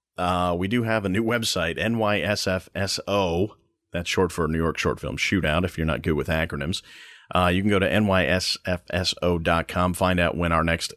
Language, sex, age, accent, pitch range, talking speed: English, male, 40-59, American, 85-100 Hz, 180 wpm